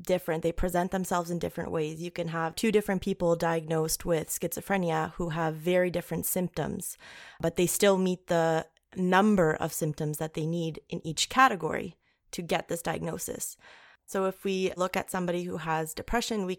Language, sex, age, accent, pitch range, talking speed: English, female, 20-39, American, 160-185 Hz, 175 wpm